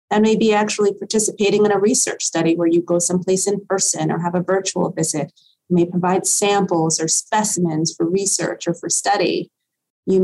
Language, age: English, 30-49